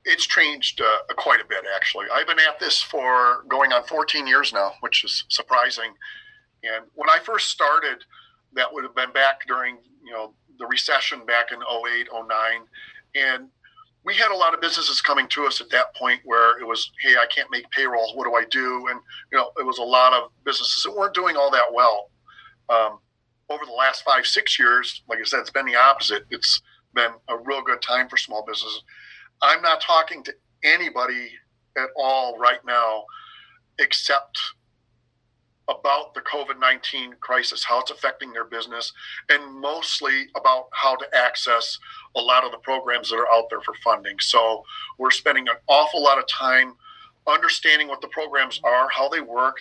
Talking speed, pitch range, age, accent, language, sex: 185 wpm, 120-155 Hz, 40-59, American, English, male